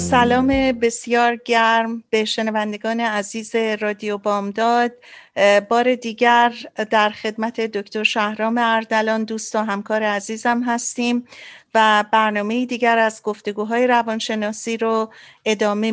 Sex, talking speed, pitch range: female, 105 wpm, 215-240 Hz